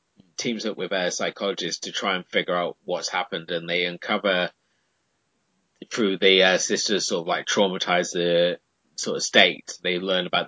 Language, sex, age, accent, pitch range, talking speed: English, male, 30-49, British, 90-120 Hz, 170 wpm